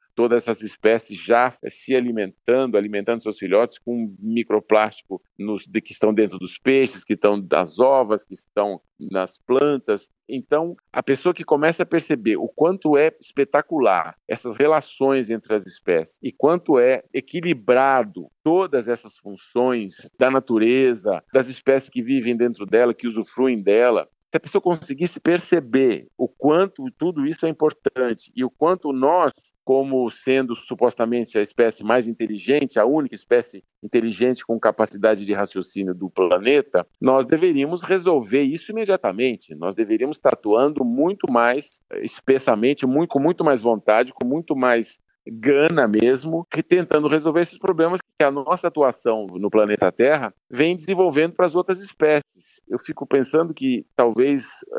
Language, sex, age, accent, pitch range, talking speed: Portuguese, male, 50-69, Brazilian, 115-160 Hz, 150 wpm